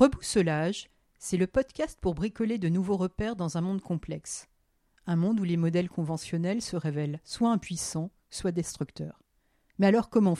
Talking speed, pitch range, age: 160 wpm, 160-215 Hz, 50-69